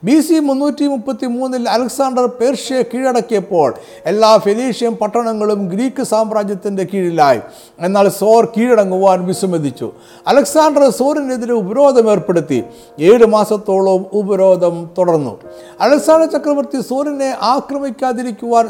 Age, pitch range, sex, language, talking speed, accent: 50-69, 185-245 Hz, male, Malayalam, 95 wpm, native